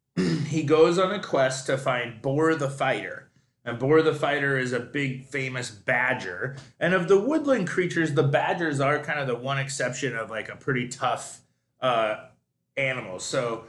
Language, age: English, 30-49